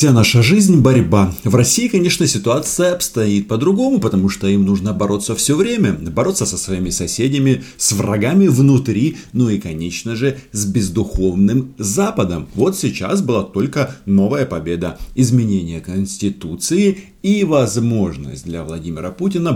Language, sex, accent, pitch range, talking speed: Russian, male, native, 95-130 Hz, 135 wpm